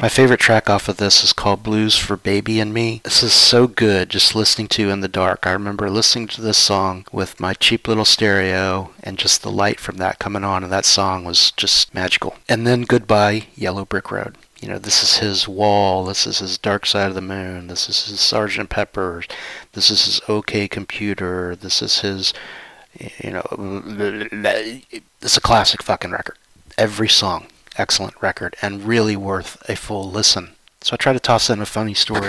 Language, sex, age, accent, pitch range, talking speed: English, male, 30-49, American, 95-115 Hz, 200 wpm